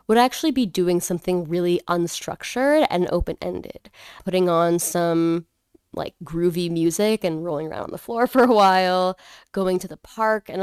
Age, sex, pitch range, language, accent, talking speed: 10-29, female, 165-195 Hz, English, American, 165 wpm